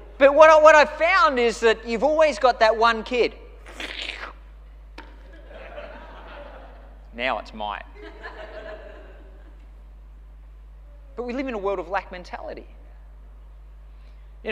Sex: male